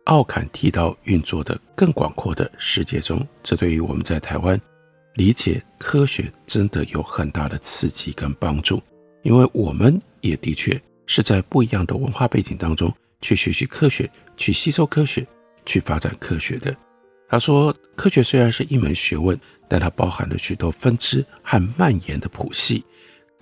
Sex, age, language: male, 50-69, Chinese